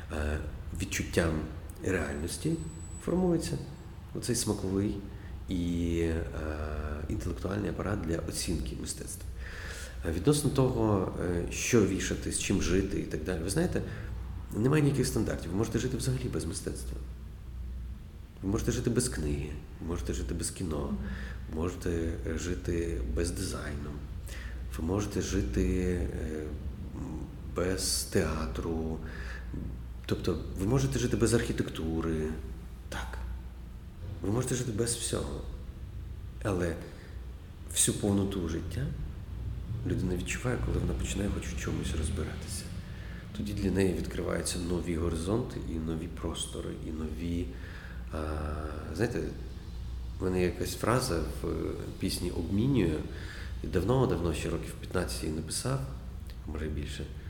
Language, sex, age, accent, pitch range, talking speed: Ukrainian, male, 40-59, native, 80-95 Hz, 110 wpm